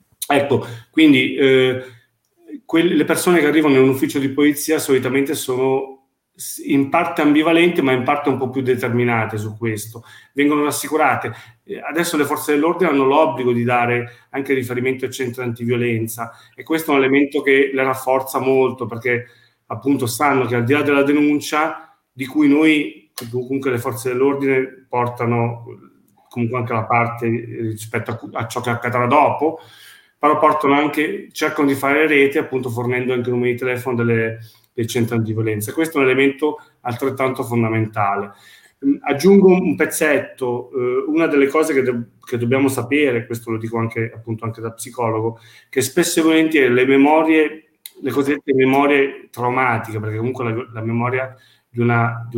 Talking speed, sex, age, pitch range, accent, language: 160 wpm, male, 40-59, 120-145 Hz, native, Italian